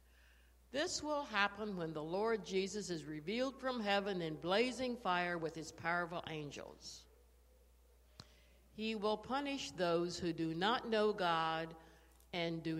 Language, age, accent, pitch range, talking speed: English, 60-79, American, 160-230 Hz, 135 wpm